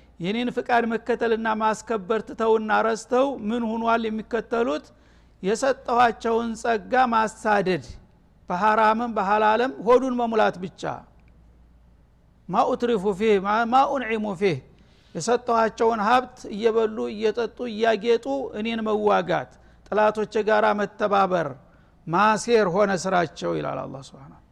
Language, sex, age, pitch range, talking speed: Amharic, male, 60-79, 210-245 Hz, 90 wpm